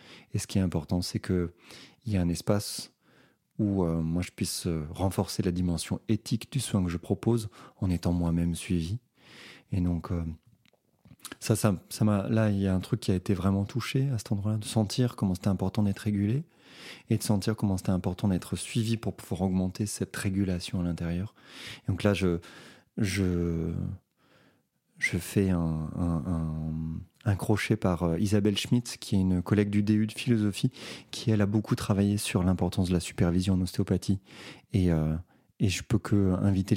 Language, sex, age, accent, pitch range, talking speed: French, male, 30-49, French, 90-105 Hz, 190 wpm